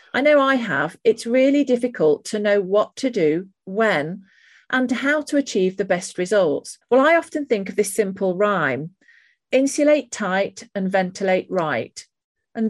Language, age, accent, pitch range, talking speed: English, 40-59, British, 185-245 Hz, 160 wpm